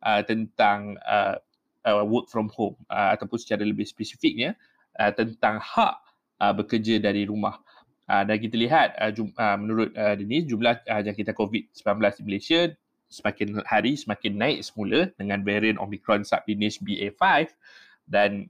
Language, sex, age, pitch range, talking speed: Malay, male, 20-39, 105-135 Hz, 150 wpm